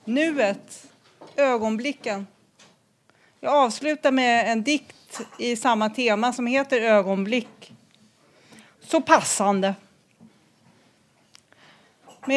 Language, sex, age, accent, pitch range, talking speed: Swedish, female, 40-59, native, 210-275 Hz, 80 wpm